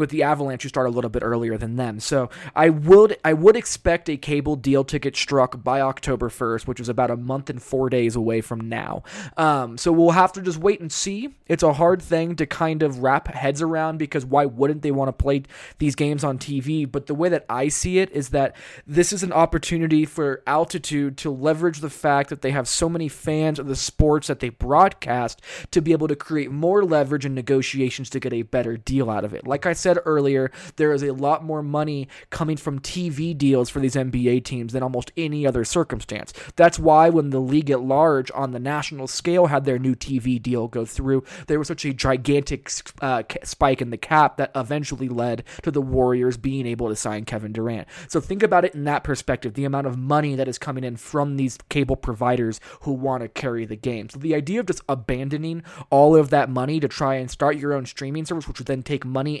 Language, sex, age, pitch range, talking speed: English, male, 20-39, 130-155 Hz, 230 wpm